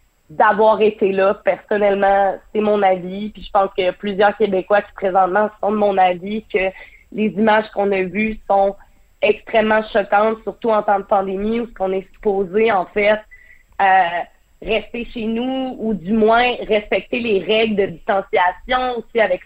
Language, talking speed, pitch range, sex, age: French, 165 wpm, 195-230 Hz, female, 30-49